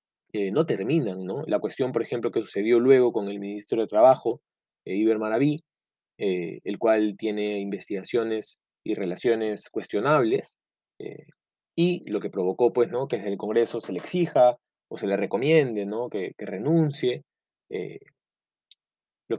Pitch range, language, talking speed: 110-155 Hz, Spanish, 160 wpm